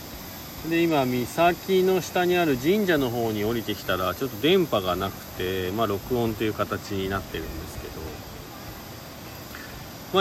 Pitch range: 100-150 Hz